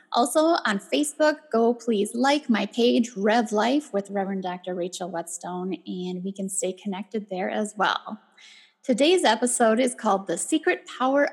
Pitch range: 210-265 Hz